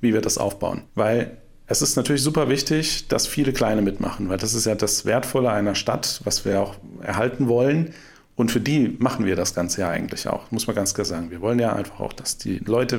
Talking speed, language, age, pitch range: 230 wpm, German, 40-59, 100-135 Hz